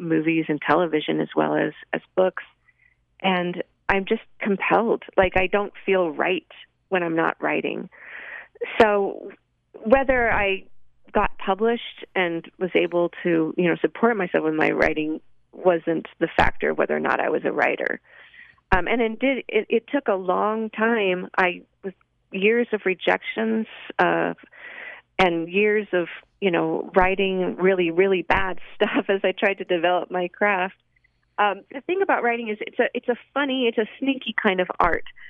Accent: American